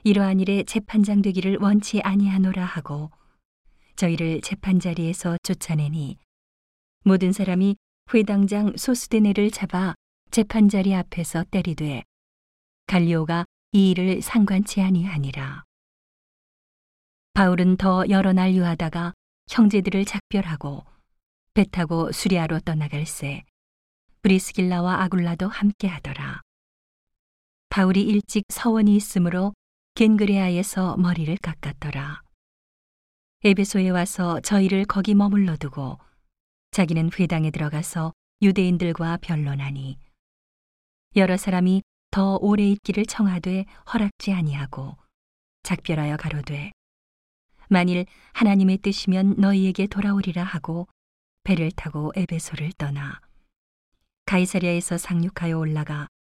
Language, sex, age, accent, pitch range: Korean, female, 40-59, native, 160-195 Hz